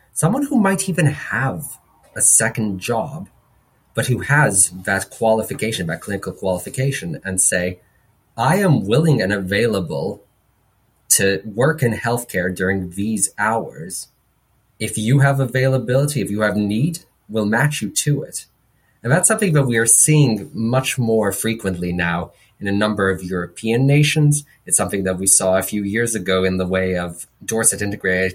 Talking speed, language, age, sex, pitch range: 160 wpm, English, 30-49, male, 95-135 Hz